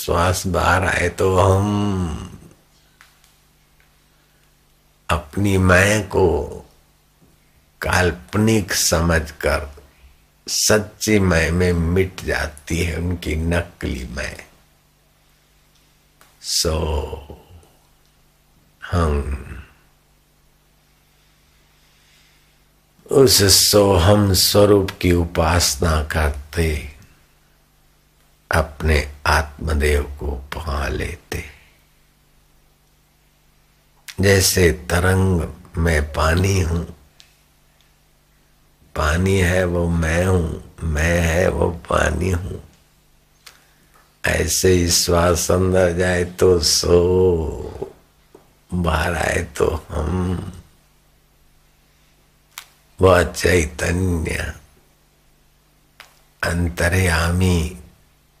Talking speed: 65 wpm